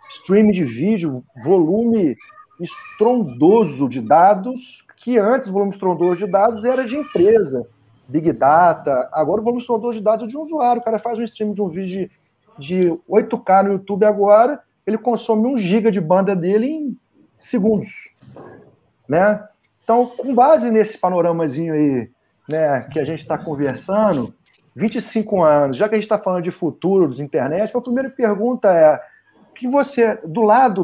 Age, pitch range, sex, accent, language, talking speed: 40-59, 175-230 Hz, male, Brazilian, Portuguese, 165 wpm